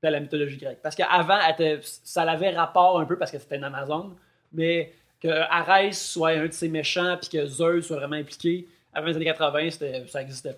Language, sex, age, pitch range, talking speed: English, male, 20-39, 150-175 Hz, 210 wpm